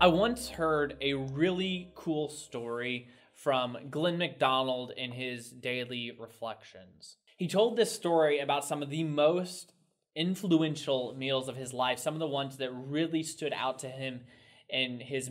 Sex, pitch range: male, 125-165 Hz